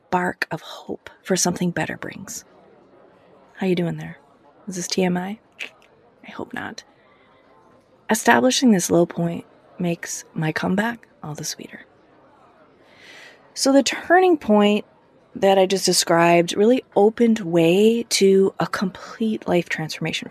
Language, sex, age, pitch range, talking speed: English, female, 30-49, 175-235 Hz, 125 wpm